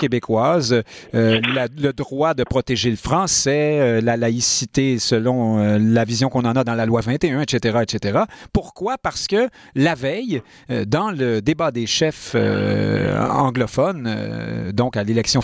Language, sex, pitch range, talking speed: French, male, 120-165 Hz, 165 wpm